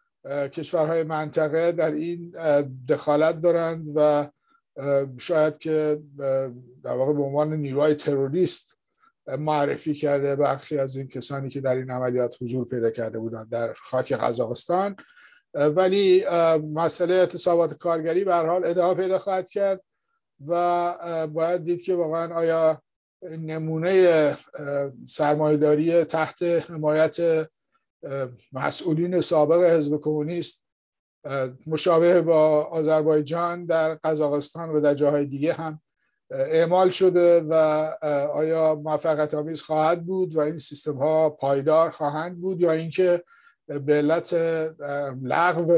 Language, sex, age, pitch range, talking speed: English, male, 50-69, 145-170 Hz, 115 wpm